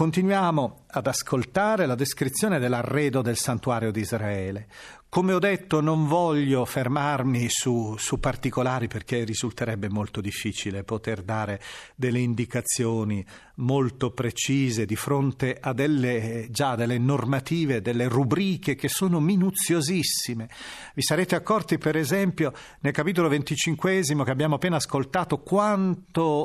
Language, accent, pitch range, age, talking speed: Italian, native, 120-170 Hz, 40-59, 125 wpm